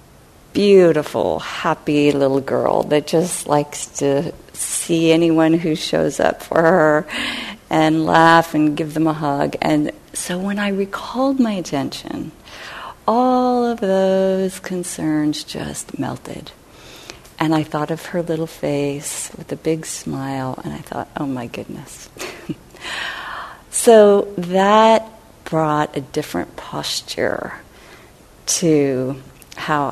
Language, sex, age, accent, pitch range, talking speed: English, female, 40-59, American, 150-215 Hz, 120 wpm